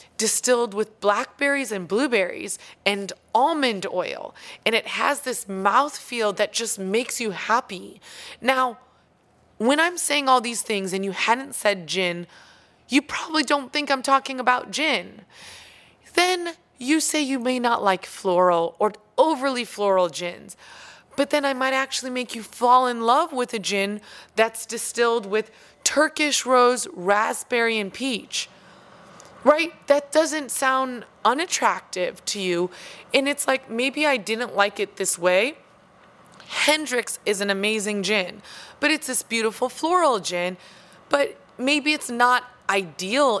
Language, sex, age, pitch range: English, female, 20-39, 195-265 Hz